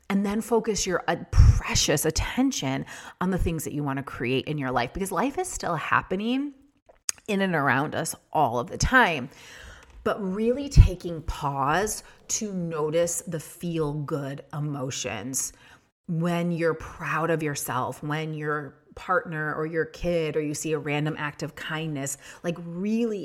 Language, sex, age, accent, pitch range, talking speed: English, female, 30-49, American, 145-185 Hz, 155 wpm